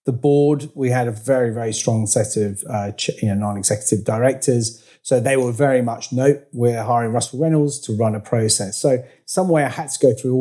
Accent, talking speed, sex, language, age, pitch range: British, 215 wpm, male, English, 30-49, 110-135 Hz